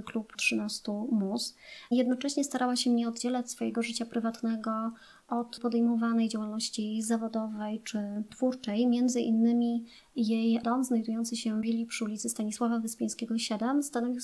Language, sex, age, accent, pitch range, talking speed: Polish, male, 30-49, native, 225-245 Hz, 130 wpm